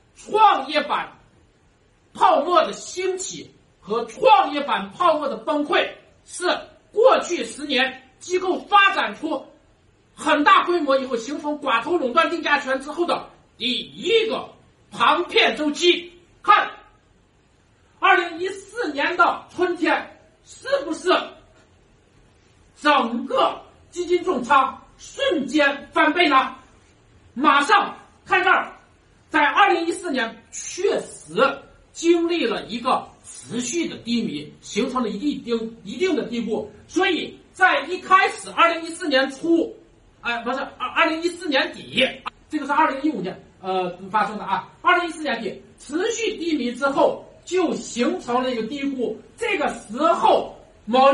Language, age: Chinese, 50-69